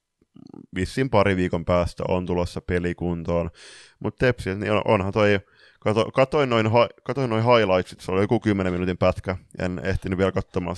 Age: 20-39